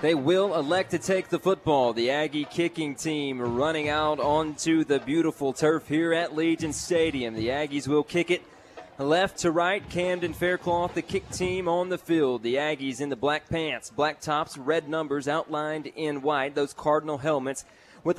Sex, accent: male, American